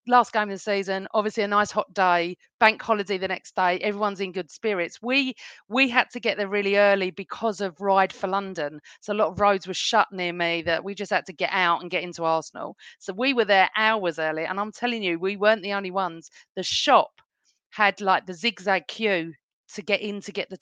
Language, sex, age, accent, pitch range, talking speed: English, female, 40-59, British, 180-215 Hz, 235 wpm